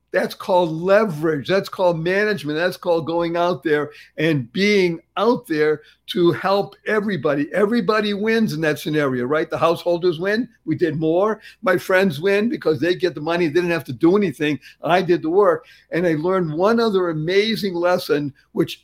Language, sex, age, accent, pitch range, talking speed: English, male, 50-69, American, 155-205 Hz, 180 wpm